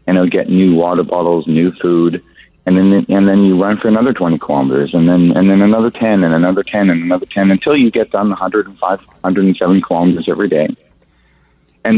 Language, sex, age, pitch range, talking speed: English, male, 40-59, 90-110 Hz, 225 wpm